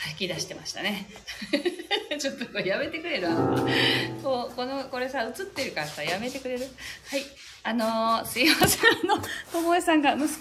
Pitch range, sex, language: 200-330 Hz, female, Japanese